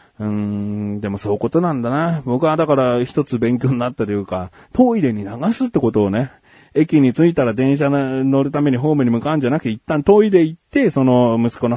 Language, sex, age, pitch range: Japanese, male, 30-49, 100-130 Hz